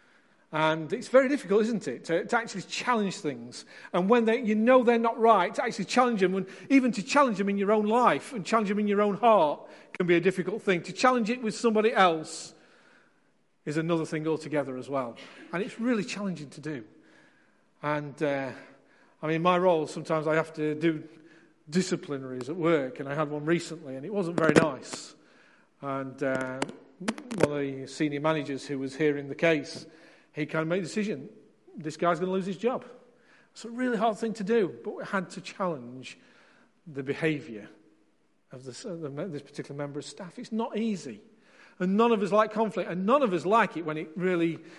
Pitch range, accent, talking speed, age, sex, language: 155-220 Hz, British, 200 wpm, 40-59, male, English